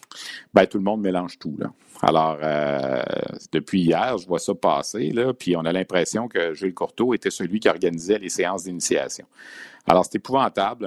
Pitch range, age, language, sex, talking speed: 90-105 Hz, 50-69, French, male, 180 wpm